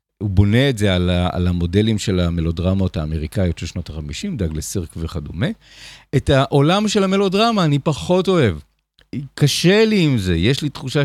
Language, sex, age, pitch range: Hebrew, male, 50-69, 105-145 Hz